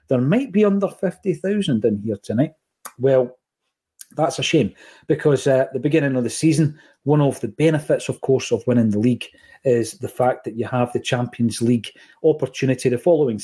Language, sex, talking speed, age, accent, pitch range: English, male, 185 wpm, 40-59, British, 125-155 Hz